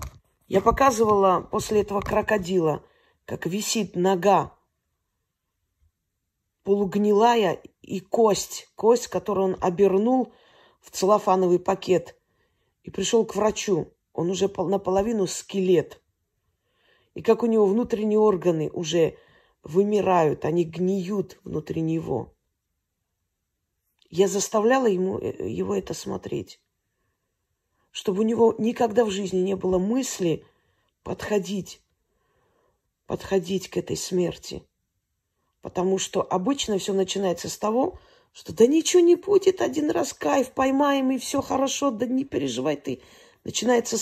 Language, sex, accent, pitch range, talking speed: Russian, female, native, 175-230 Hz, 110 wpm